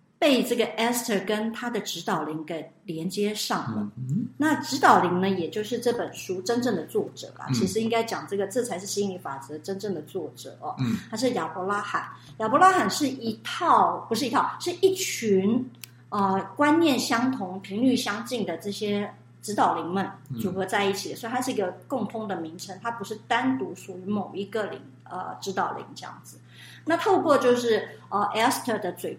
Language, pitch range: Chinese, 185-240 Hz